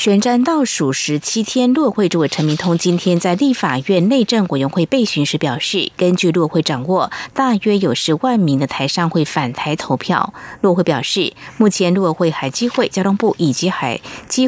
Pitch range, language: 155-205 Hz, Chinese